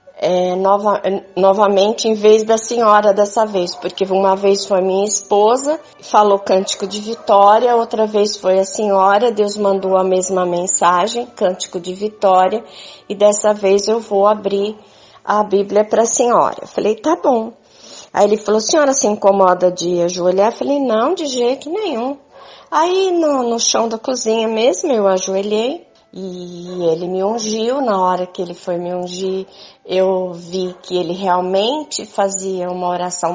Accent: Brazilian